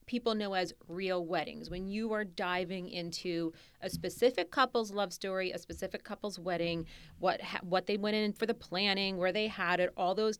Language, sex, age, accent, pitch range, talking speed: English, female, 30-49, American, 180-220 Hz, 190 wpm